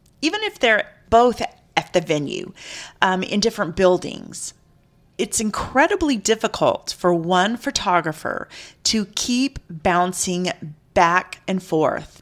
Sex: female